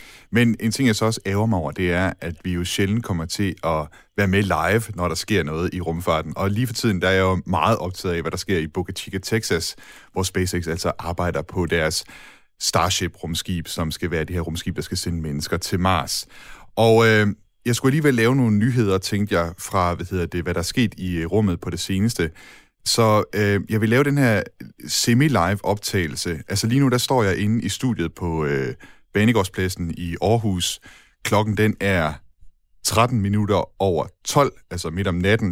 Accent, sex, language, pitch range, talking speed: native, male, Danish, 85-110 Hz, 205 wpm